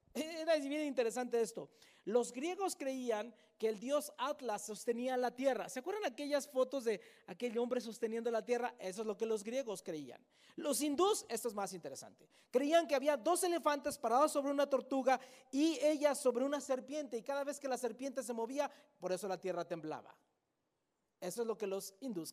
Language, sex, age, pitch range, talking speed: Spanish, male, 40-59, 205-290 Hz, 190 wpm